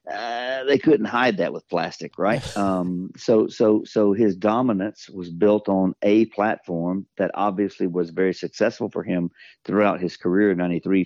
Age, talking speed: 50-69, 170 wpm